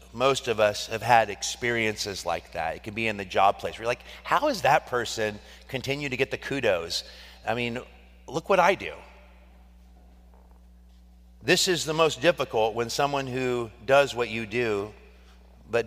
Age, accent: 30-49, American